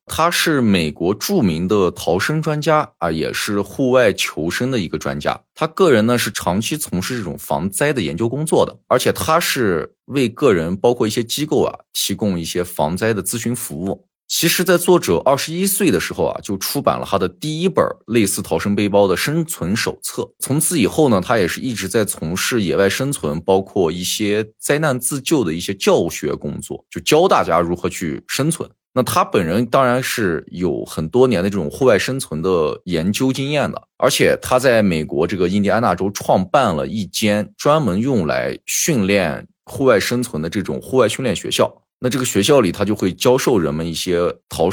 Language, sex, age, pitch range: Chinese, male, 20-39, 95-140 Hz